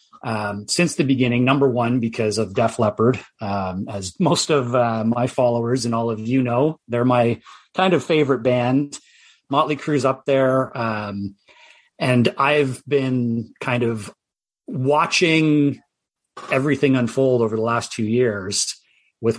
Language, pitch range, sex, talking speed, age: English, 115-145 Hz, male, 145 wpm, 30-49